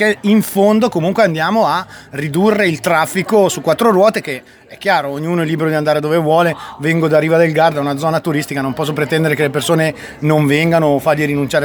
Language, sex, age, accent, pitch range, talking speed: Italian, male, 30-49, native, 150-195 Hz, 205 wpm